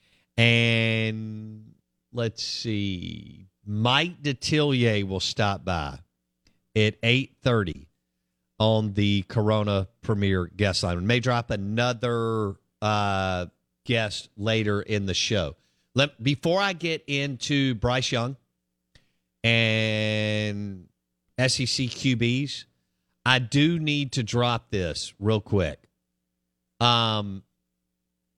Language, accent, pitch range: English, American, 80-120 Hz